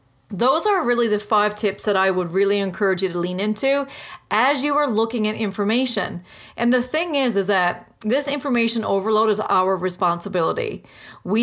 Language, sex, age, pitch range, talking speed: English, female, 30-49, 195-245 Hz, 180 wpm